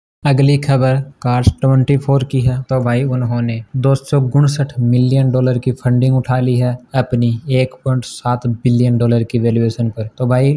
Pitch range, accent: 120-130 Hz, native